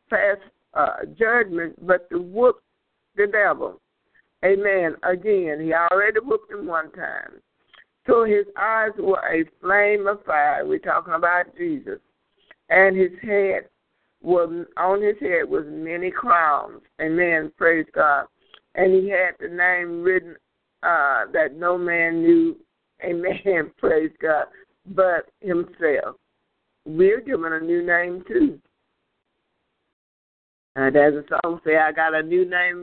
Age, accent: 50-69, American